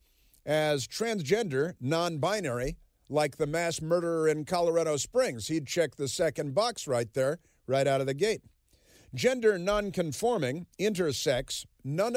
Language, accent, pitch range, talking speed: English, American, 135-200 Hz, 130 wpm